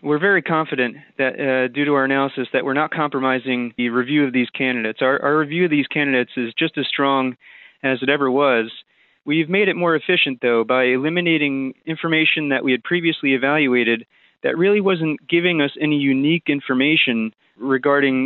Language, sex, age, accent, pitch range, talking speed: English, male, 30-49, American, 130-155 Hz, 180 wpm